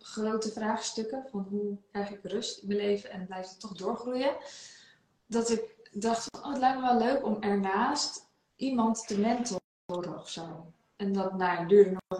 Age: 20-39